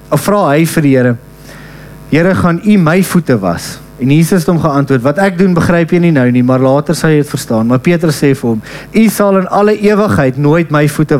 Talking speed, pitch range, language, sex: 235 wpm, 140-175 Hz, English, male